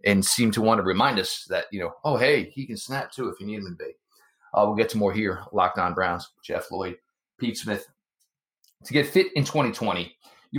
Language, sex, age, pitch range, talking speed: English, male, 30-49, 105-140 Hz, 230 wpm